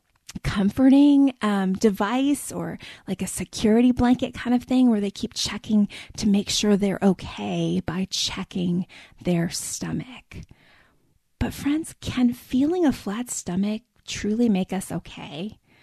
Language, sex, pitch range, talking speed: English, female, 185-260 Hz, 135 wpm